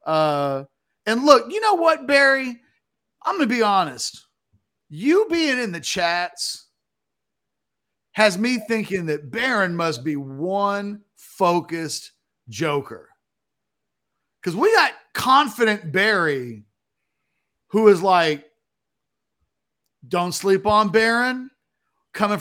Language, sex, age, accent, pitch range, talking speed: English, male, 40-59, American, 175-230 Hz, 105 wpm